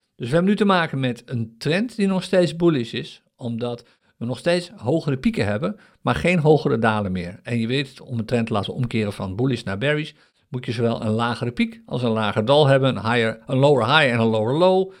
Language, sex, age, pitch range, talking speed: Dutch, male, 50-69, 115-155 Hz, 240 wpm